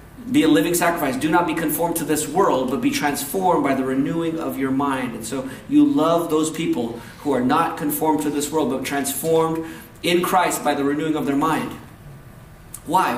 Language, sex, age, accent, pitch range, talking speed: English, male, 40-59, American, 135-175 Hz, 200 wpm